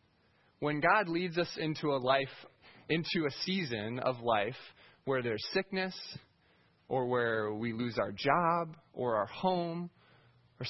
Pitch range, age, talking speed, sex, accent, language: 125-170 Hz, 20-39, 140 wpm, male, American, English